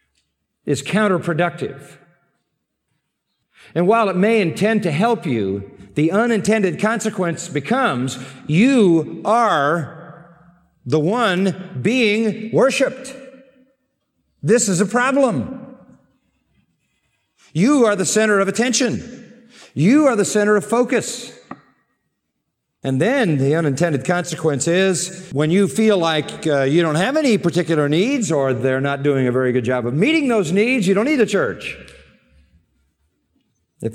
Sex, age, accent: male, 50-69, American